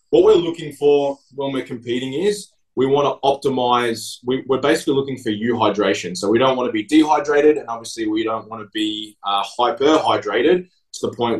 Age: 20-39